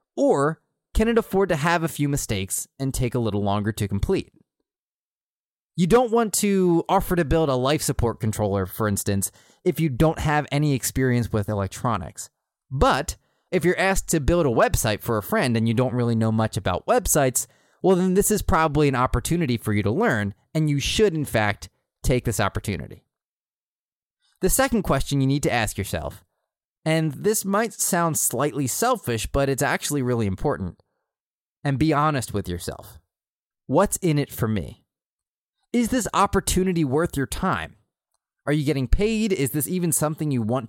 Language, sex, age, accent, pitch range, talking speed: English, male, 20-39, American, 110-170 Hz, 175 wpm